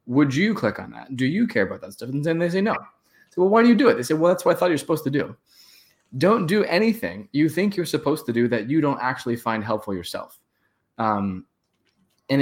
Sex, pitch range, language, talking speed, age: male, 115-175 Hz, English, 245 wpm, 20-39